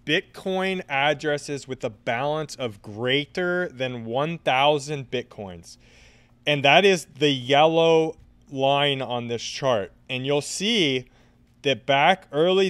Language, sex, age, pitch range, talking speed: English, male, 30-49, 120-155 Hz, 120 wpm